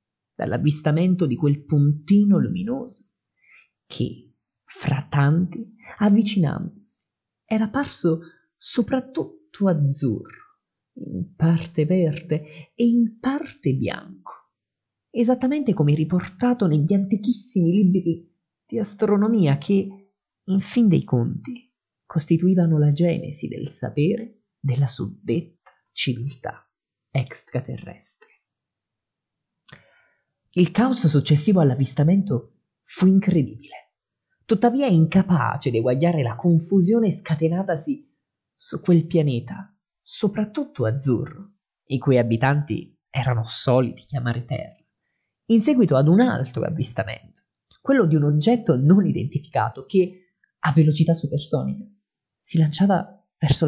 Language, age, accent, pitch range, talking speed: Italian, 30-49, native, 145-205 Hz, 95 wpm